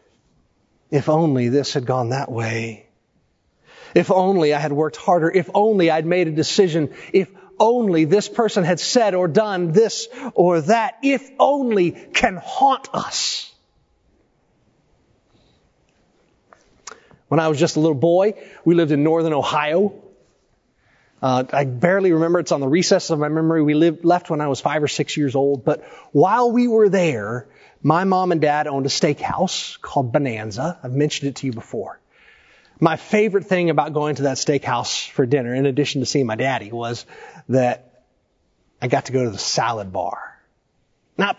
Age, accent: 30-49, American